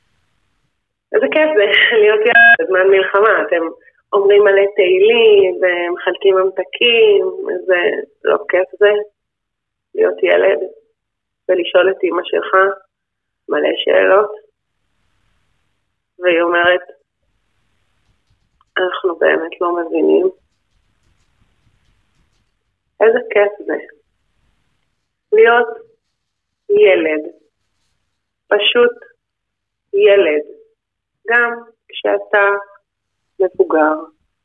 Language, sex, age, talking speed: Hebrew, female, 30-49, 75 wpm